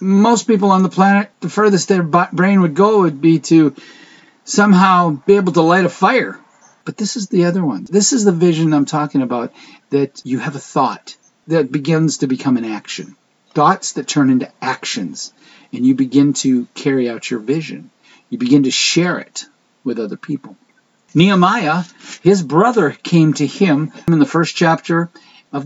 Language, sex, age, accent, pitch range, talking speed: English, male, 50-69, American, 140-195 Hz, 180 wpm